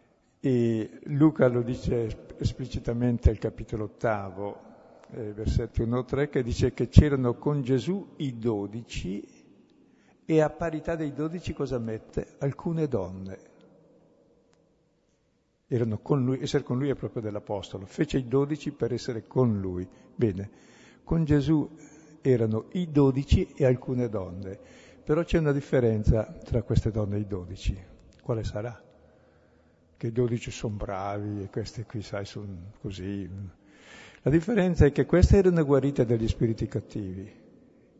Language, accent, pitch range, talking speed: Italian, native, 105-140 Hz, 130 wpm